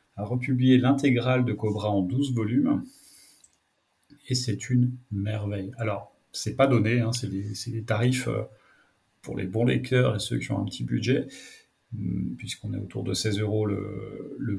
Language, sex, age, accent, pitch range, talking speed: French, male, 40-59, French, 105-125 Hz, 170 wpm